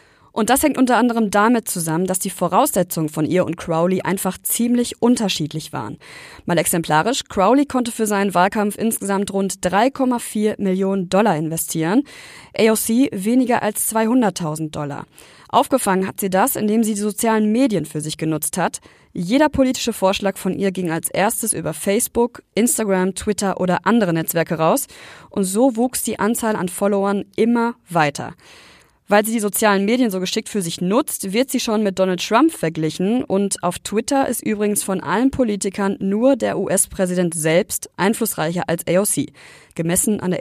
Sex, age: female, 20-39